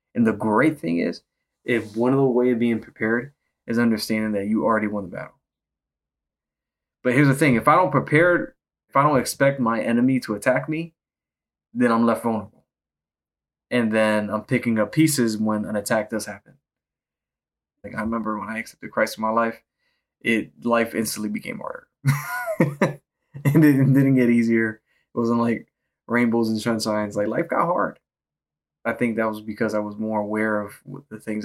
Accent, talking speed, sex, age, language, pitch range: American, 185 wpm, male, 20-39, English, 105-125 Hz